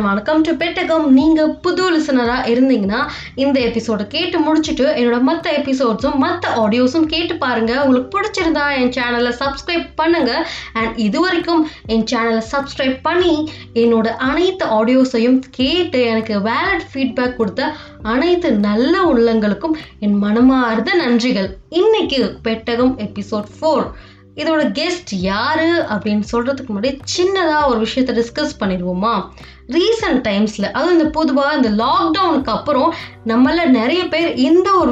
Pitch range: 230-315 Hz